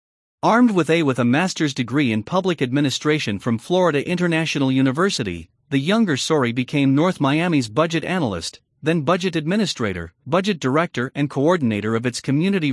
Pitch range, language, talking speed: 130-180 Hz, English, 150 wpm